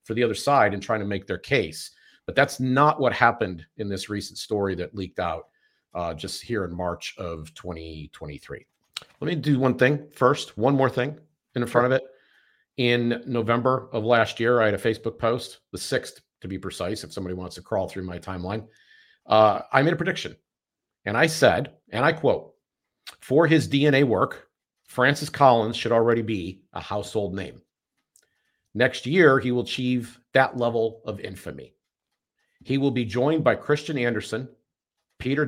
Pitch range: 100-130 Hz